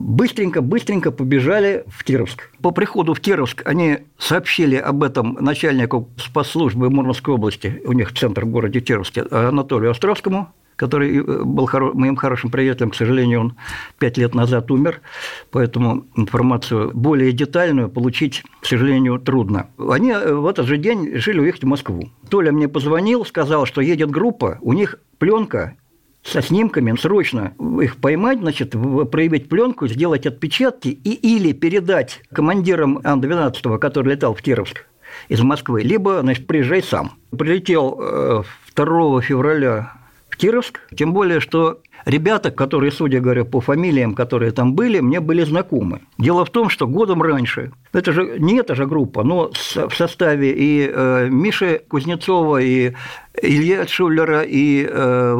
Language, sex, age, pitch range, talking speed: Russian, male, 50-69, 125-165 Hz, 140 wpm